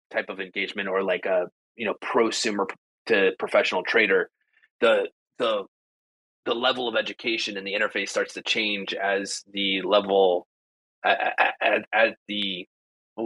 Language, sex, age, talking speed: English, male, 30-49, 140 wpm